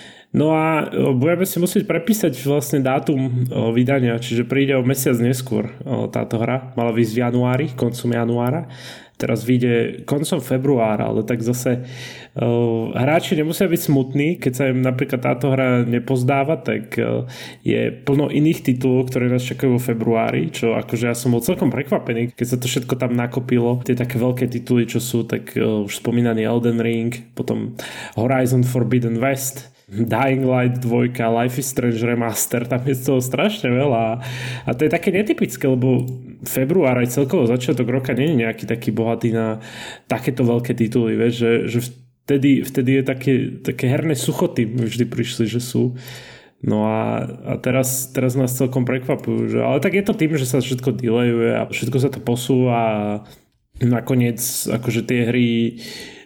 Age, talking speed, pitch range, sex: 20-39, 160 wpm, 120-135 Hz, male